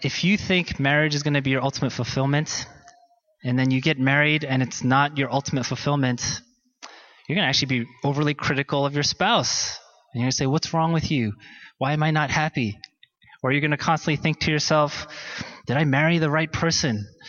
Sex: male